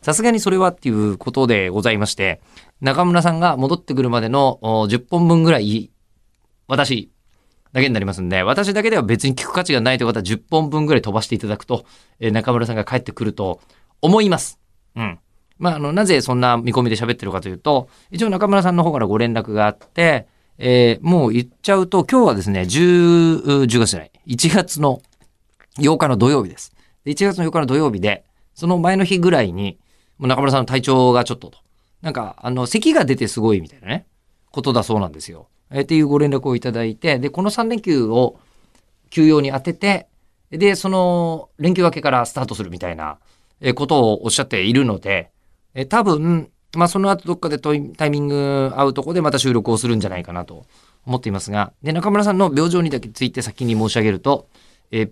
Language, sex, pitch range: Japanese, male, 110-170 Hz